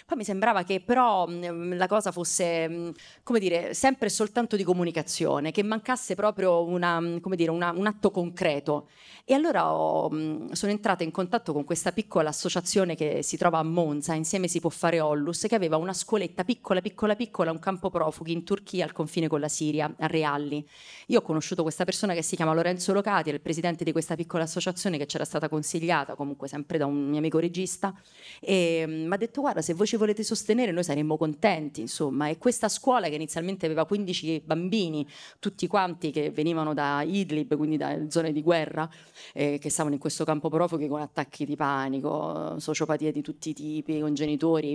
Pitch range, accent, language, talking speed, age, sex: 155-190 Hz, native, Italian, 190 wpm, 30-49, female